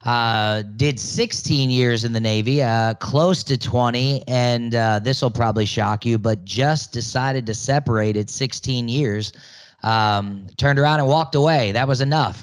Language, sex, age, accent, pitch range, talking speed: English, male, 20-39, American, 120-145 Hz, 170 wpm